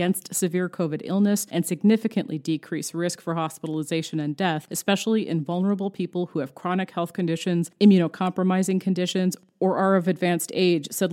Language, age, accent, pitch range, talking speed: English, 30-49, American, 165-195 Hz, 160 wpm